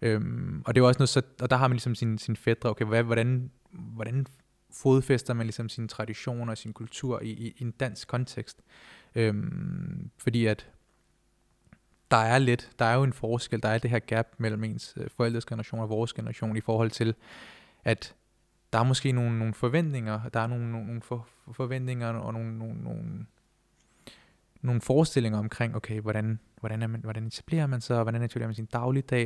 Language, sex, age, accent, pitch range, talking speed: Danish, male, 20-39, native, 115-130 Hz, 190 wpm